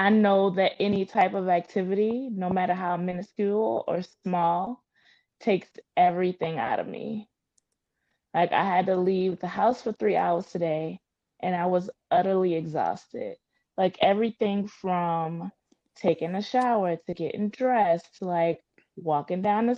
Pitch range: 170-230 Hz